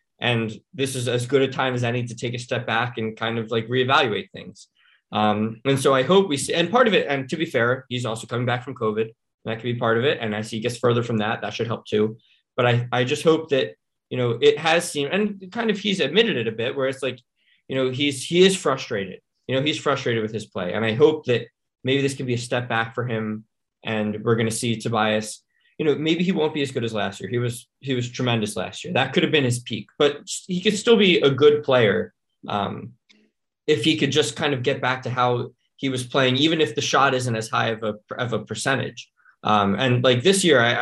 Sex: male